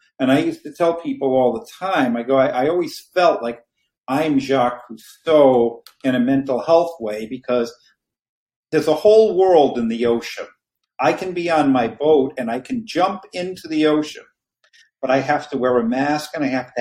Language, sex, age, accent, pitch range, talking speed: English, male, 50-69, American, 130-175 Hz, 200 wpm